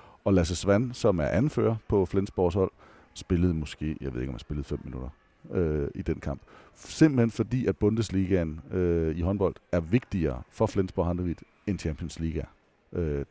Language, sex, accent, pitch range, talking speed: English, male, Danish, 85-105 Hz, 175 wpm